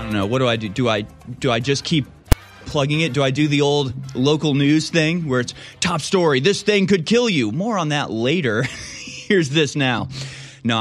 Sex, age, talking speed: male, 30-49, 220 wpm